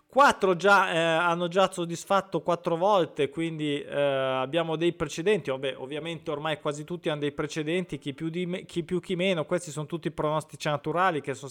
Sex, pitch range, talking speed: male, 150-185 Hz, 195 wpm